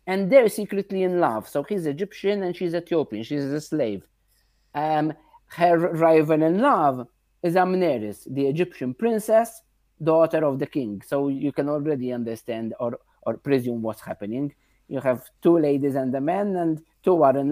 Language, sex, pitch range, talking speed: English, male, 140-195 Hz, 170 wpm